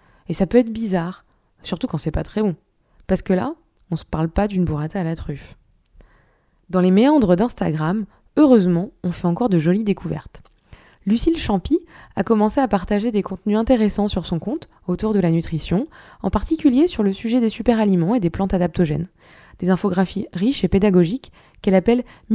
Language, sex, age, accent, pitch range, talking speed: French, female, 20-39, French, 180-235 Hz, 185 wpm